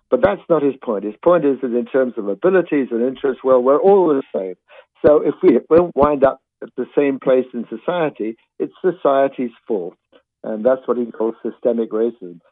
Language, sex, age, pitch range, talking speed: English, male, 60-79, 110-135 Hz, 200 wpm